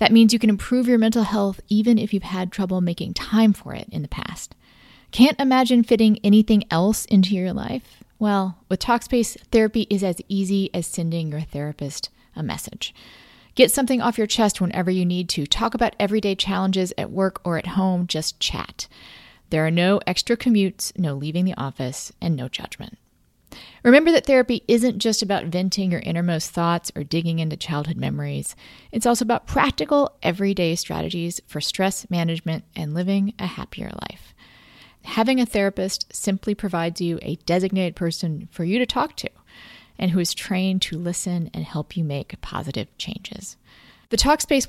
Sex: female